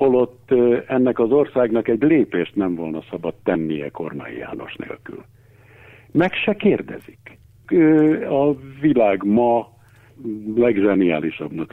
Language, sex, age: Hungarian, male, 60-79